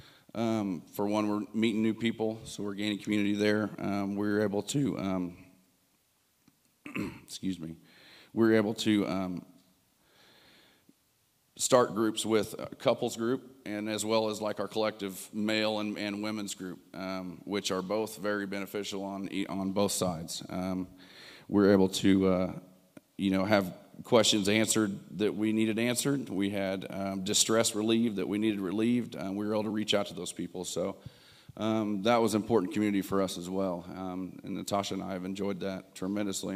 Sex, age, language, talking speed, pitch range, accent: male, 40-59, English, 170 wpm, 95-110 Hz, American